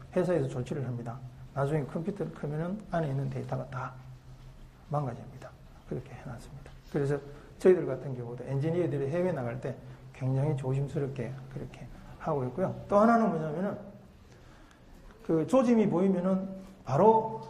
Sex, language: male, Korean